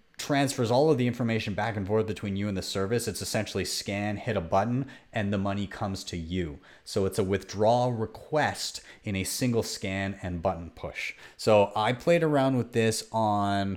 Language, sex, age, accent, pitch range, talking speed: English, male, 30-49, American, 95-110 Hz, 190 wpm